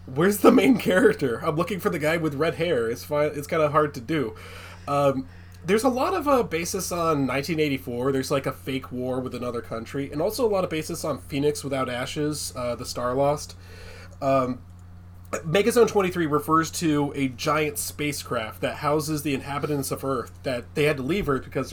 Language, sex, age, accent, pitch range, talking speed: English, male, 20-39, American, 115-150 Hz, 200 wpm